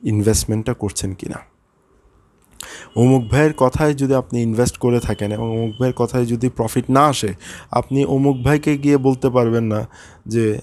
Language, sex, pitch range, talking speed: Bengali, male, 115-140 Hz, 150 wpm